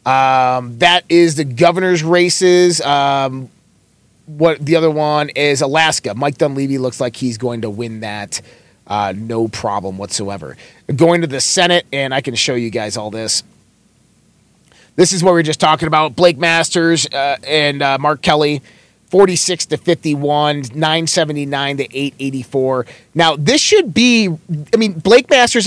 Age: 30-49